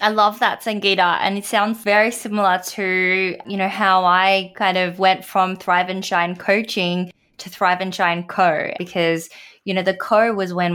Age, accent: 20-39, Australian